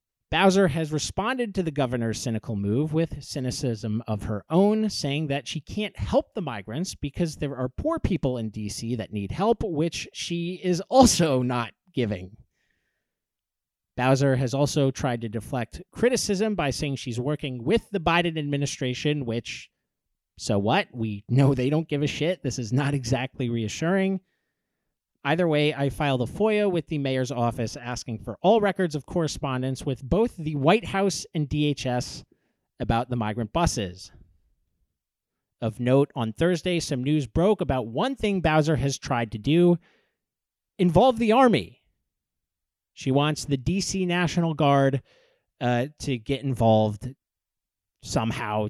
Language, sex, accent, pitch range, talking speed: English, male, American, 120-170 Hz, 150 wpm